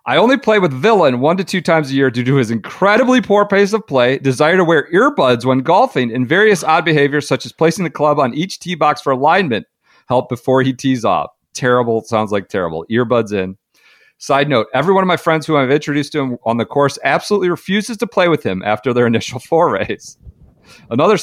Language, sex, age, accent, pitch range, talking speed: English, male, 40-59, American, 110-150 Hz, 220 wpm